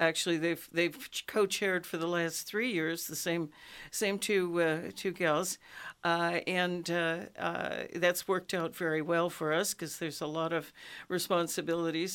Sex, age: female, 60-79